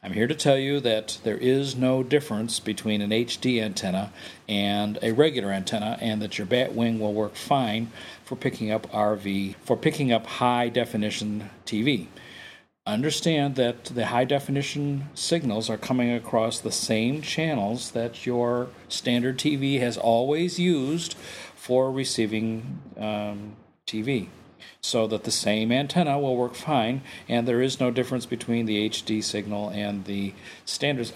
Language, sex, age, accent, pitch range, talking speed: English, male, 50-69, American, 105-125 Hz, 150 wpm